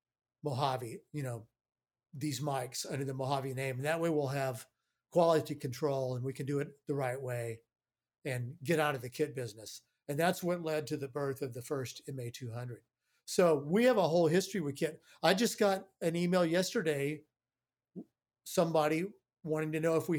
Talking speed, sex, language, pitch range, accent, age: 185 wpm, male, English, 130-165 Hz, American, 50-69